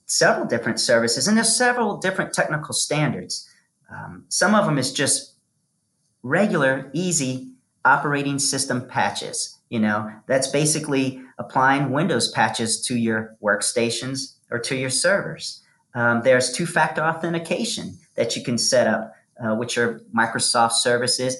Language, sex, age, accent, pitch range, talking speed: English, male, 40-59, American, 125-175 Hz, 135 wpm